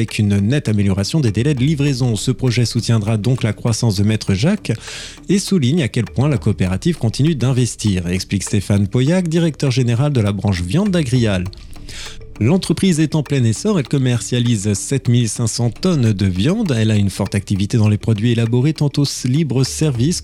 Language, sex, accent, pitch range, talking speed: French, male, French, 110-150 Hz, 170 wpm